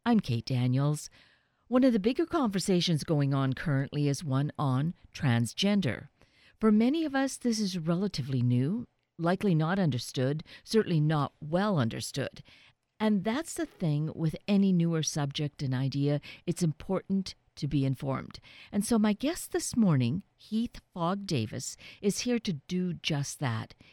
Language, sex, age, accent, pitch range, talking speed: English, female, 50-69, American, 140-200 Hz, 150 wpm